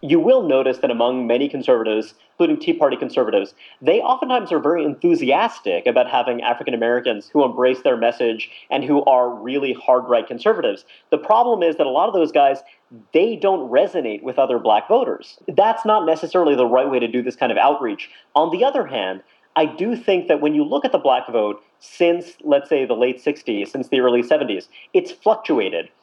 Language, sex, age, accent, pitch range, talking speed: English, male, 40-59, American, 125-180 Hz, 195 wpm